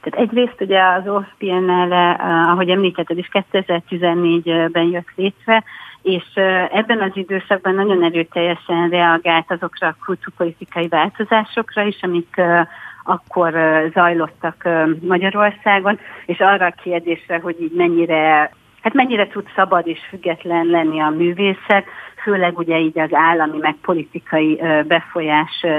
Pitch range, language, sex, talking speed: 165-190 Hz, Hungarian, female, 120 wpm